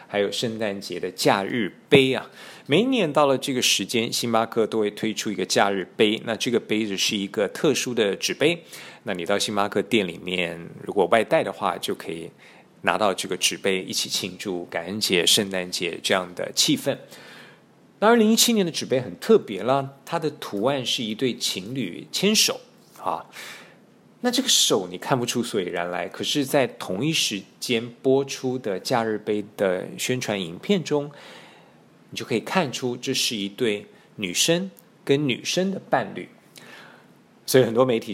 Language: Chinese